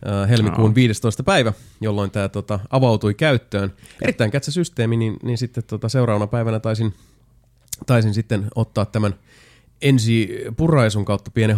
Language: Finnish